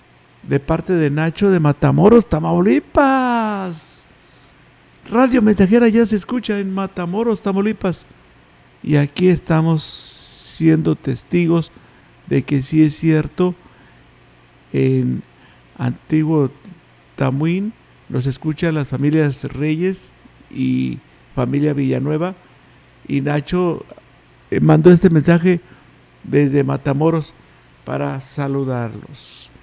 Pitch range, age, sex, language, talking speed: 135-195 Hz, 50-69, male, Spanish, 95 wpm